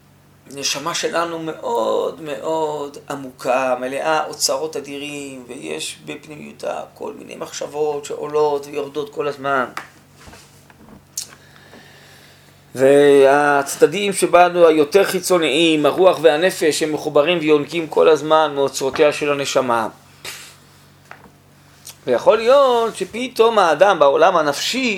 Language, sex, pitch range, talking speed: Hebrew, male, 145-230 Hz, 90 wpm